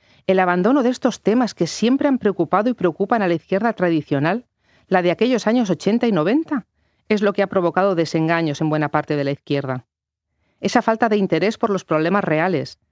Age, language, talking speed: 40-59, Spanish, 195 wpm